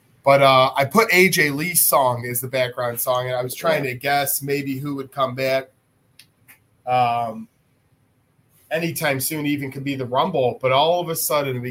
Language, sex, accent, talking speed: English, male, American, 185 wpm